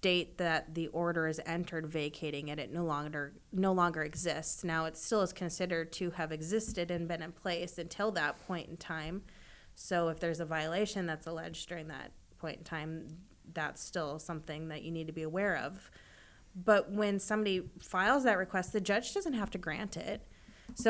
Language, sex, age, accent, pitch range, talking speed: English, female, 20-39, American, 165-205 Hz, 190 wpm